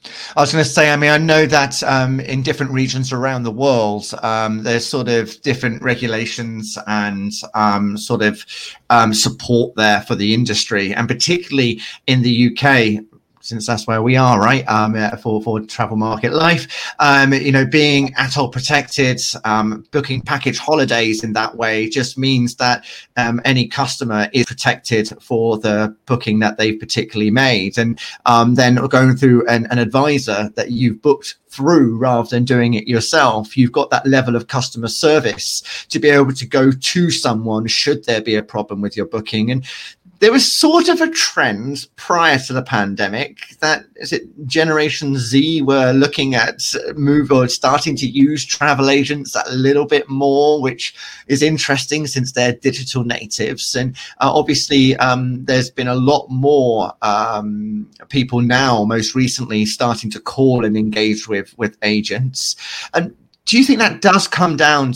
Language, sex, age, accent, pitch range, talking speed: English, male, 30-49, British, 115-140 Hz, 170 wpm